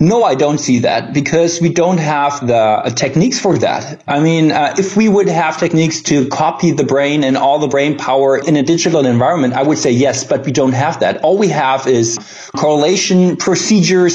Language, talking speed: English, 210 wpm